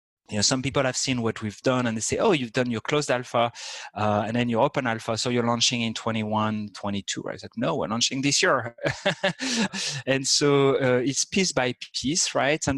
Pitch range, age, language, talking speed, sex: 110-135 Hz, 30-49, English, 215 wpm, male